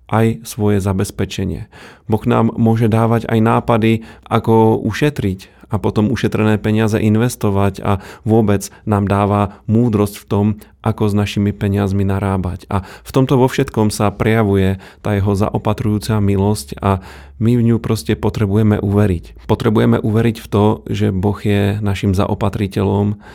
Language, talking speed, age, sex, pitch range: Slovak, 140 wpm, 30-49, male, 100-110 Hz